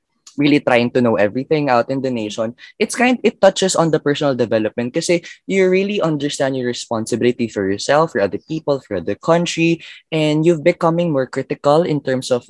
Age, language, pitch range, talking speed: 20-39, Filipino, 120-165 Hz, 190 wpm